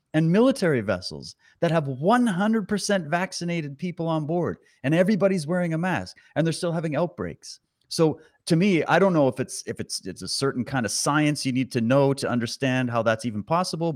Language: English